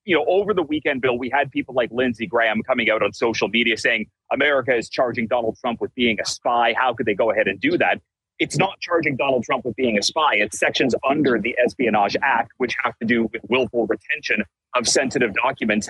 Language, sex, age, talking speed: English, male, 30-49, 225 wpm